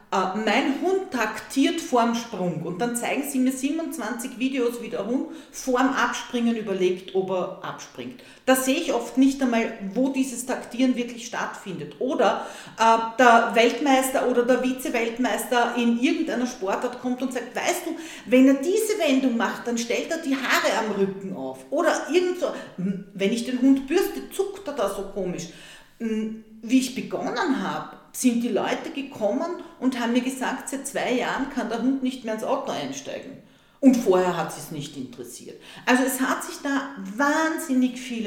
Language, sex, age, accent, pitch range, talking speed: German, female, 40-59, Austrian, 215-270 Hz, 170 wpm